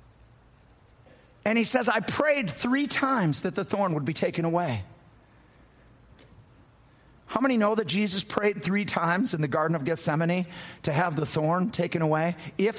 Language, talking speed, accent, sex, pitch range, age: English, 160 wpm, American, male, 140-230 Hz, 50-69